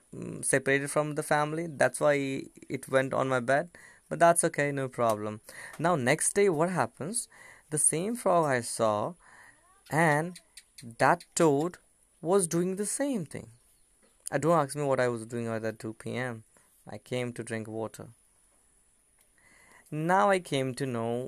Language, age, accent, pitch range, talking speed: English, 20-39, Indian, 115-150 Hz, 160 wpm